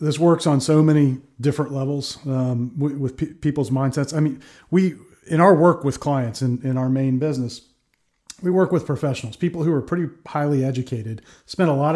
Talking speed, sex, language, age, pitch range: 190 wpm, male, English, 40-59, 130-150 Hz